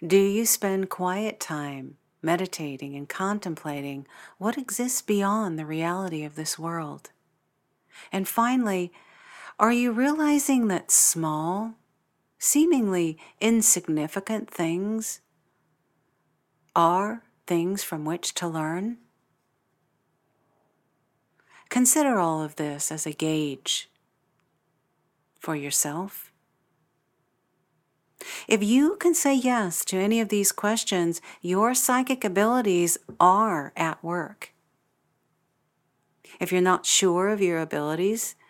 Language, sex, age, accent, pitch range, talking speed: English, female, 50-69, American, 160-220 Hz, 100 wpm